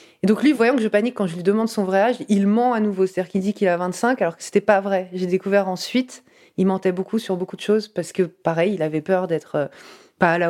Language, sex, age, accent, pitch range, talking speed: French, female, 20-39, French, 170-205 Hz, 280 wpm